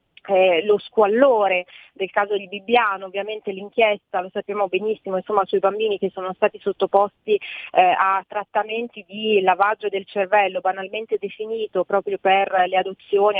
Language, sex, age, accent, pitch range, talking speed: Italian, female, 30-49, native, 200-235 Hz, 145 wpm